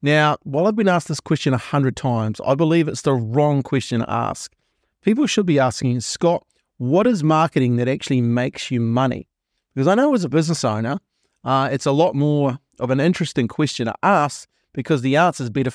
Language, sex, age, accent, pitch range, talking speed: English, male, 30-49, Australian, 125-160 Hz, 205 wpm